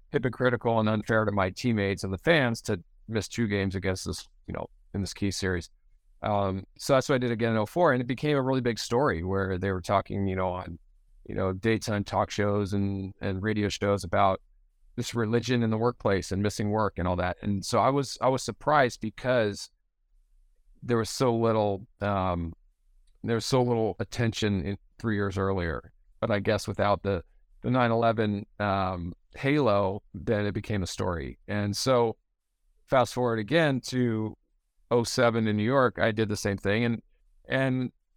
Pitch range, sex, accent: 95-115 Hz, male, American